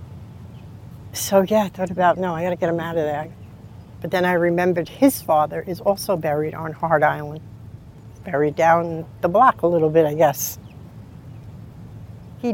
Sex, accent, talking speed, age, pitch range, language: female, American, 170 wpm, 60-79, 115-175 Hz, English